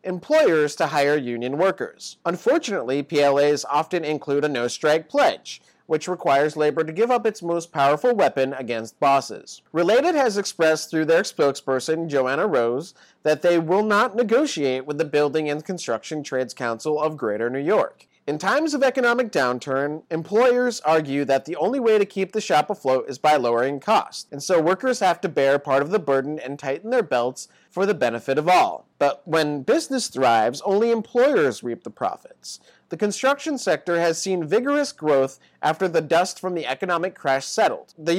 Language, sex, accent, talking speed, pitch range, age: English, male, American, 175 wpm, 140-205 Hz, 30-49